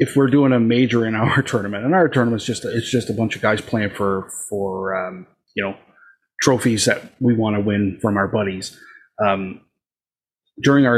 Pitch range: 110-135 Hz